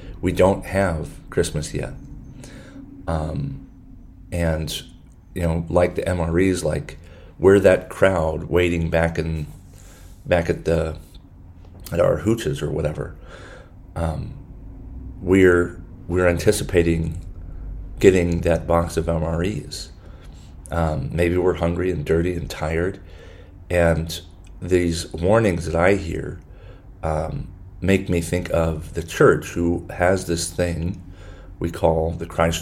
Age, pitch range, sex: 40-59, 80-90 Hz, male